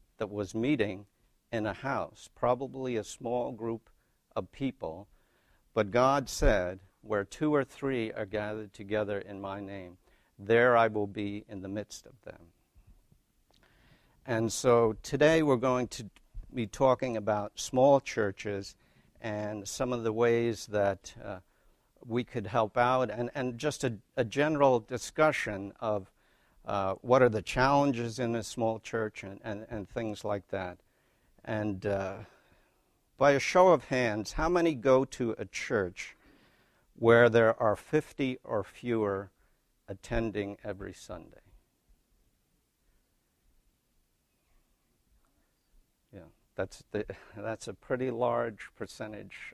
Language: English